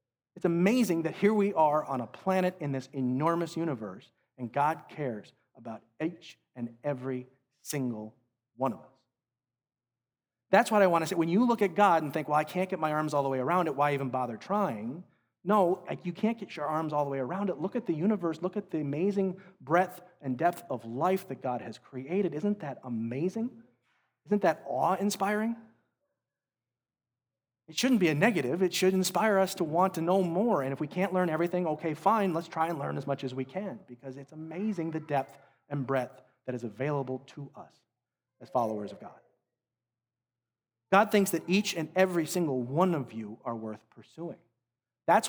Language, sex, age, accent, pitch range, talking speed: English, male, 40-59, American, 130-180 Hz, 195 wpm